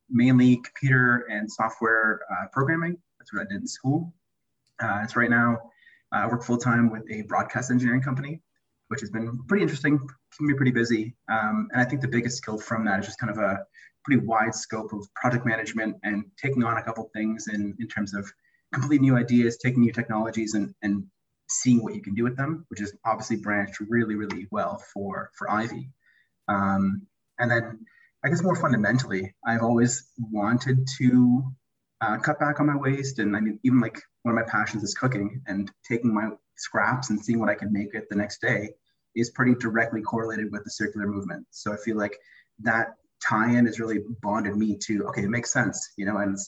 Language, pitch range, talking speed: English, 105-125 Hz, 205 wpm